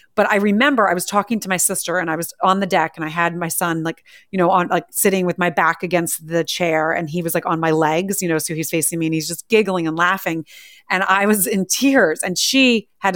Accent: American